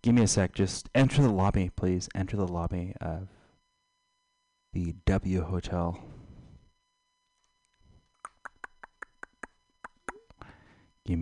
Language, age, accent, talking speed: English, 30-49, American, 90 wpm